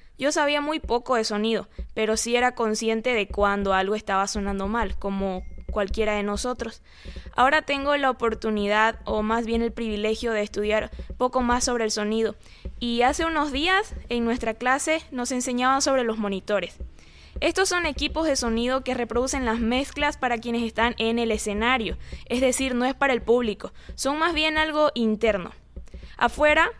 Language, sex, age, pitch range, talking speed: Spanish, female, 10-29, 220-265 Hz, 170 wpm